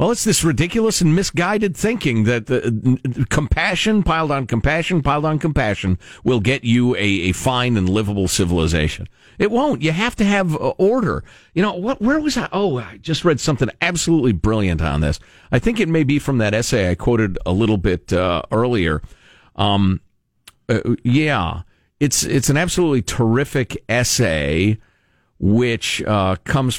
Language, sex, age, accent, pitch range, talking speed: English, male, 50-69, American, 105-165 Hz, 170 wpm